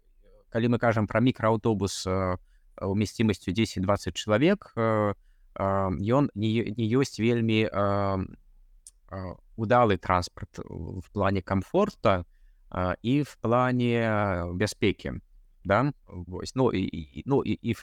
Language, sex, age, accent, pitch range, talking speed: Russian, male, 20-39, native, 95-120 Hz, 95 wpm